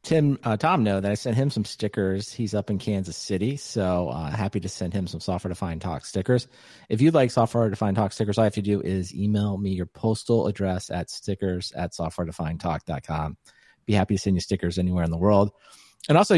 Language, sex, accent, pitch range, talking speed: English, male, American, 100-120 Hz, 220 wpm